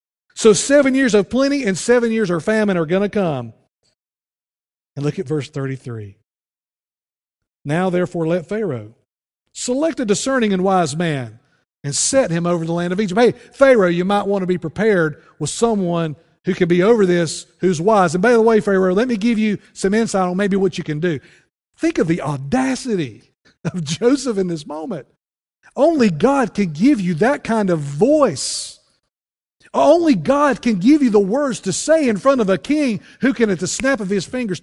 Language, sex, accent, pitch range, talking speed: English, male, American, 165-240 Hz, 190 wpm